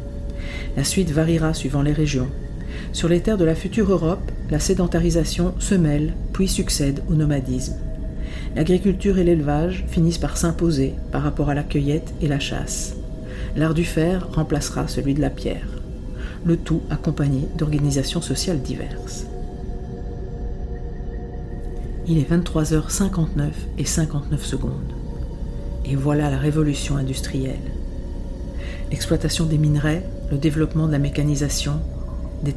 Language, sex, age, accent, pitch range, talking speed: French, female, 50-69, French, 120-160 Hz, 125 wpm